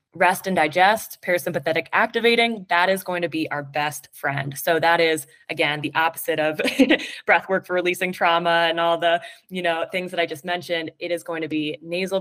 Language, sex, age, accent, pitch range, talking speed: English, female, 20-39, American, 155-190 Hz, 200 wpm